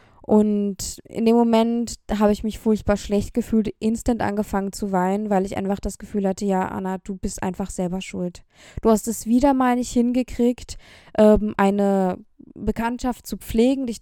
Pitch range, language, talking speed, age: 195-230 Hz, German, 170 wpm, 20-39